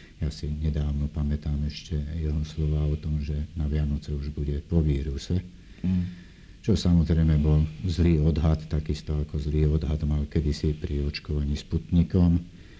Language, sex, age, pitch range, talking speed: Slovak, male, 60-79, 75-90 Hz, 140 wpm